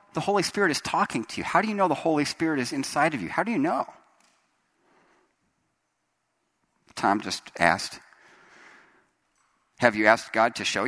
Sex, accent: male, American